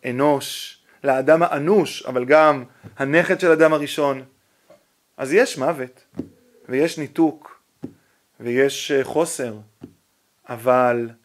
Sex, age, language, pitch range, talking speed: male, 30-49, Hebrew, 140-195 Hz, 90 wpm